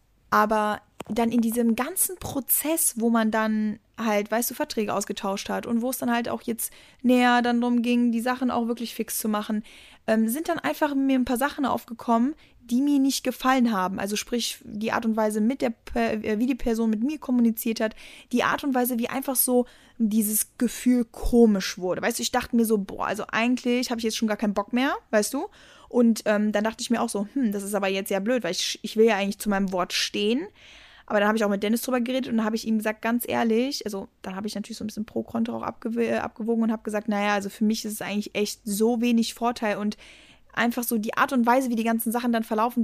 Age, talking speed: 10-29, 240 wpm